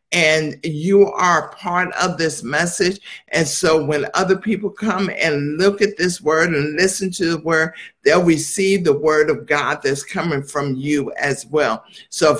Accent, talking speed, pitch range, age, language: American, 180 wpm, 160-205 Hz, 60-79, English